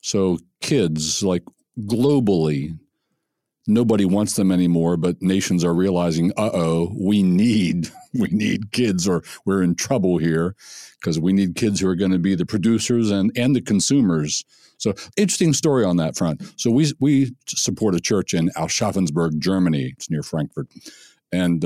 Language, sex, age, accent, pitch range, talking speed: English, male, 60-79, American, 85-115 Hz, 160 wpm